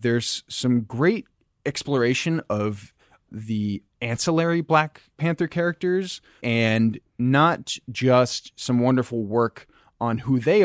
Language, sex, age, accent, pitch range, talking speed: English, male, 20-39, American, 105-130 Hz, 105 wpm